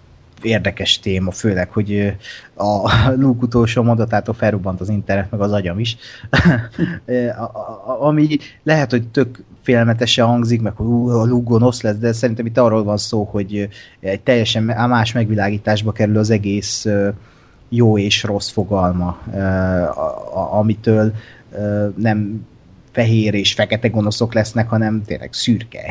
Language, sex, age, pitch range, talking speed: Hungarian, male, 30-49, 100-120 Hz, 130 wpm